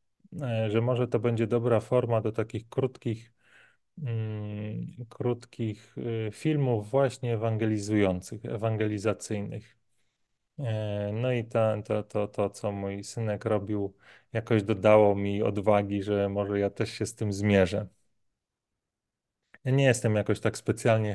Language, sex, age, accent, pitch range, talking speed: Polish, male, 30-49, native, 105-120 Hz, 120 wpm